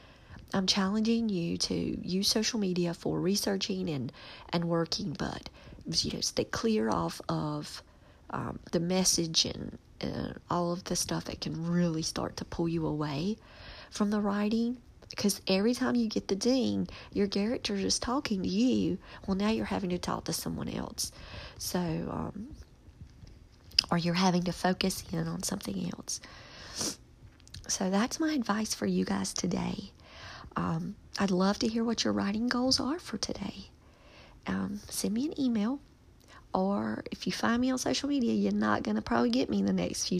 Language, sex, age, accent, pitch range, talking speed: English, female, 40-59, American, 165-220 Hz, 175 wpm